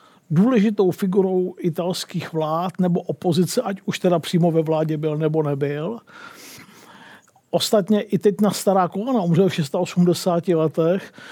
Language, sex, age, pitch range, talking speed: Czech, male, 50-69, 170-210 Hz, 135 wpm